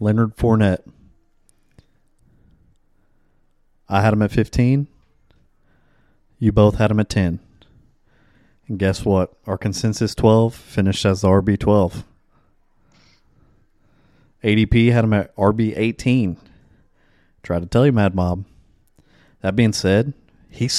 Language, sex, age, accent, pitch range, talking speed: English, male, 30-49, American, 95-115 Hz, 115 wpm